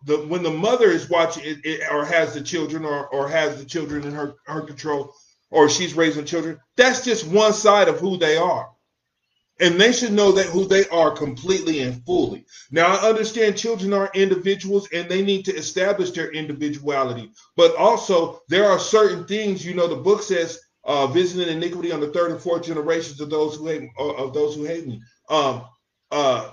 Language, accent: English, American